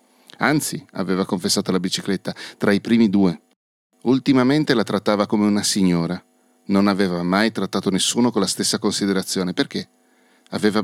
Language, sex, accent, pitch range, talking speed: Italian, male, native, 95-110 Hz, 145 wpm